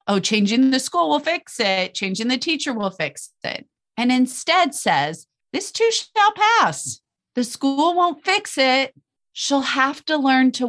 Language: English